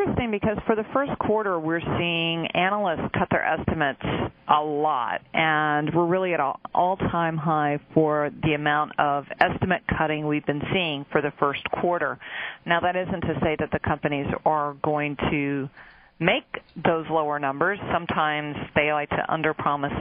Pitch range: 145-170 Hz